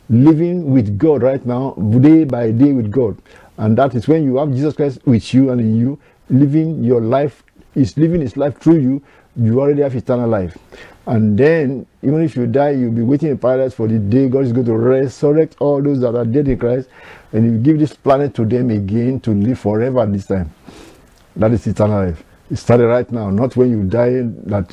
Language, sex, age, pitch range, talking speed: English, male, 50-69, 115-140 Hz, 215 wpm